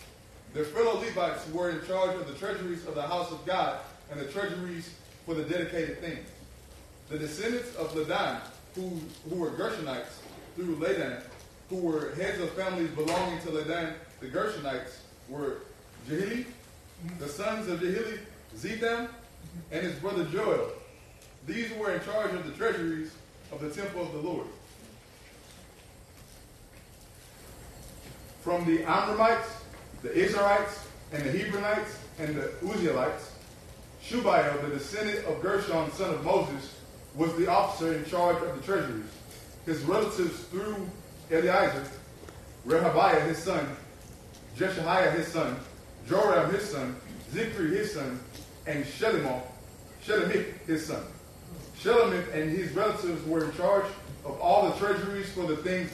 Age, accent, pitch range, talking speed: 20-39, American, 155-195 Hz, 135 wpm